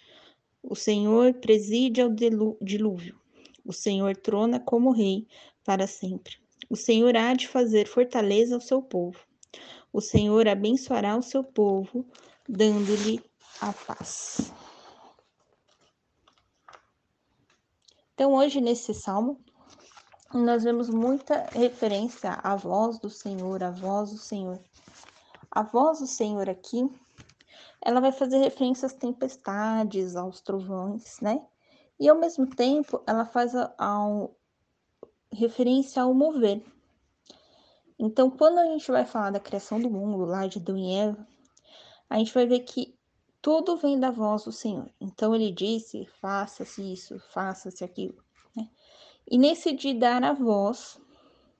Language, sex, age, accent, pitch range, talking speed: Portuguese, female, 20-39, Brazilian, 205-260 Hz, 130 wpm